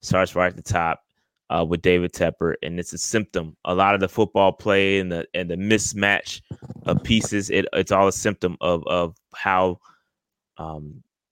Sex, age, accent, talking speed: male, 20-39, American, 190 wpm